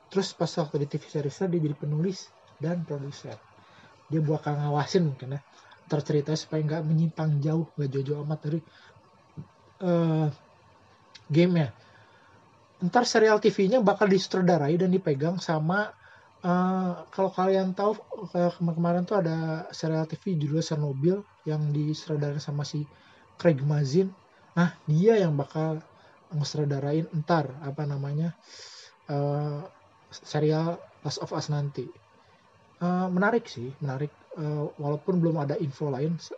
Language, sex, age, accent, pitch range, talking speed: Indonesian, male, 30-49, native, 145-175 Hz, 130 wpm